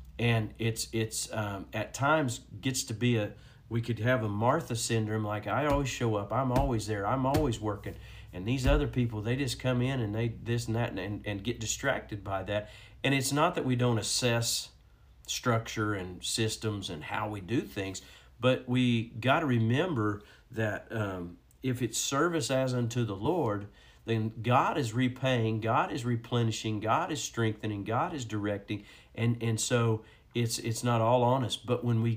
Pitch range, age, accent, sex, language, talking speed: 105-125 Hz, 50-69, American, male, English, 185 wpm